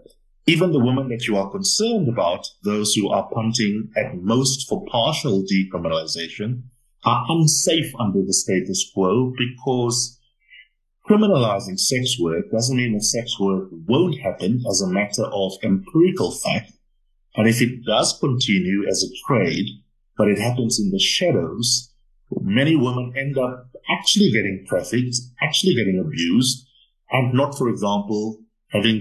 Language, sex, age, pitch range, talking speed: English, male, 50-69, 100-125 Hz, 145 wpm